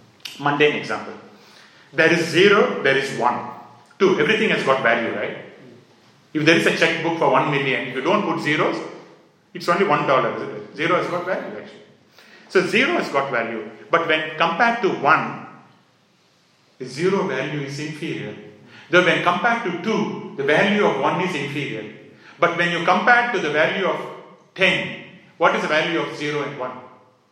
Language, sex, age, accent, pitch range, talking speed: English, male, 40-59, Indian, 125-185 Hz, 175 wpm